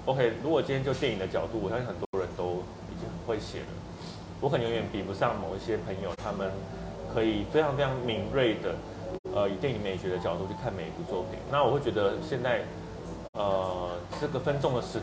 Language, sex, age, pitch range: Chinese, male, 20-39, 95-125 Hz